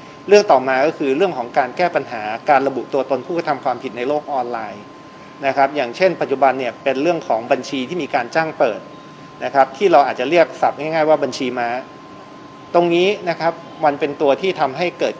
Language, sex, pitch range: Thai, male, 130-160 Hz